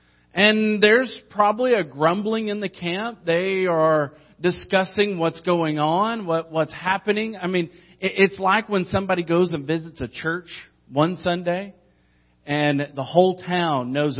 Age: 40-59